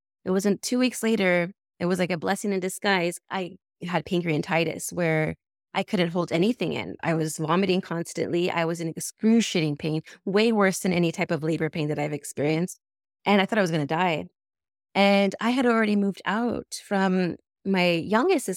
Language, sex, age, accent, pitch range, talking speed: English, female, 20-39, American, 170-205 Hz, 185 wpm